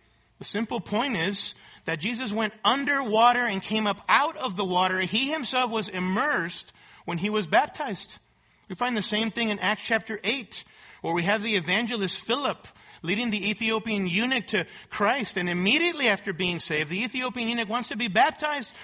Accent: American